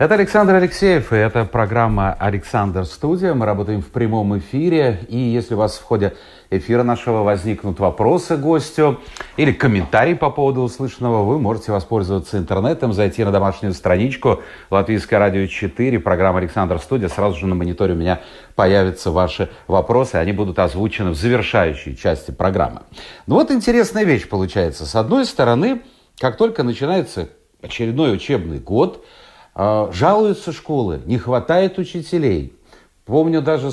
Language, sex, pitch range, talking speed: Russian, male, 100-150 Hz, 140 wpm